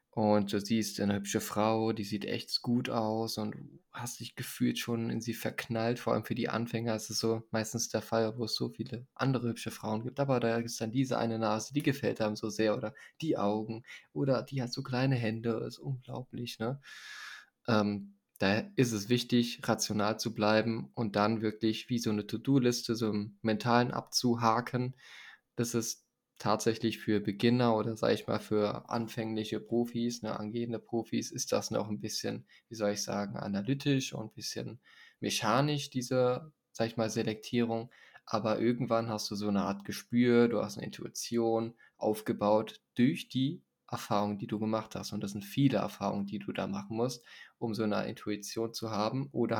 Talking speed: 185 wpm